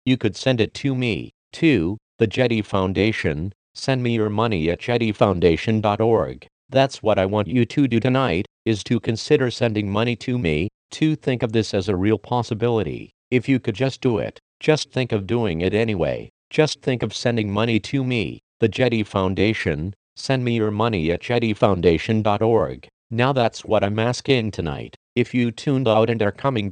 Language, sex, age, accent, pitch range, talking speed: English, male, 50-69, American, 105-125 Hz, 180 wpm